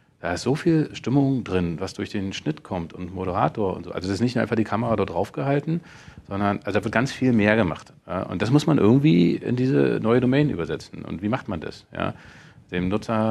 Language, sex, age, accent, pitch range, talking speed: German, male, 40-59, German, 95-120 Hz, 225 wpm